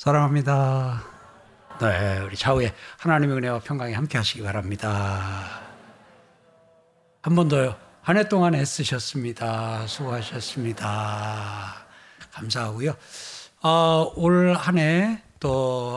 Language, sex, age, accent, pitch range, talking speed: Spanish, male, 60-79, Korean, 125-165 Hz, 70 wpm